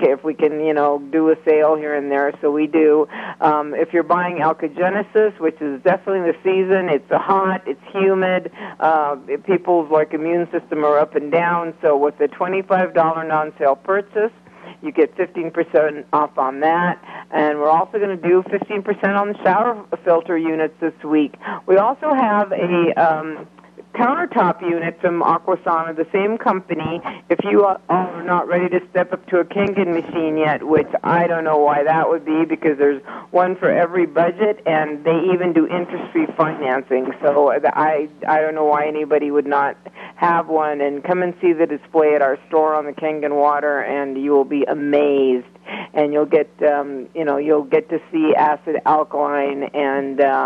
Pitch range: 150-180 Hz